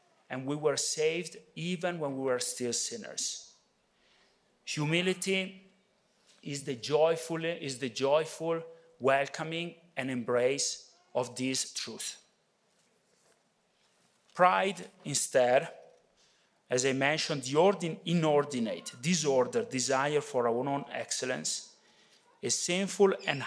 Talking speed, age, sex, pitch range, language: 100 wpm, 40-59, male, 135-195 Hz, English